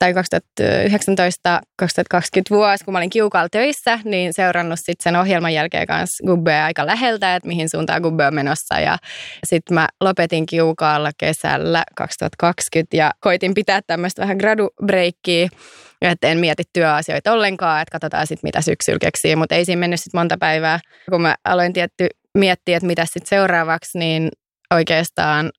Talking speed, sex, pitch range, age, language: 150 wpm, female, 160-190 Hz, 20-39, Finnish